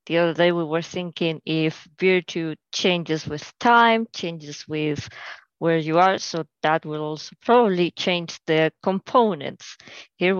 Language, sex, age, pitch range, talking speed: English, female, 20-39, 160-195 Hz, 145 wpm